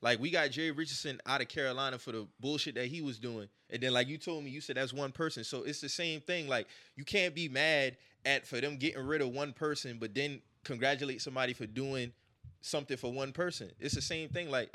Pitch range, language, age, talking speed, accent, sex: 125-155 Hz, English, 20-39, 240 wpm, American, male